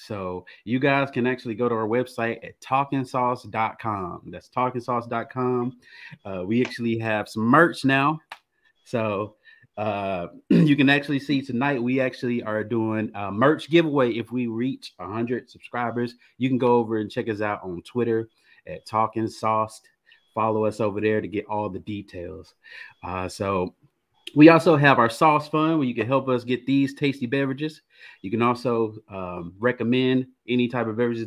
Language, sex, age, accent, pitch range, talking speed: English, male, 30-49, American, 105-130 Hz, 165 wpm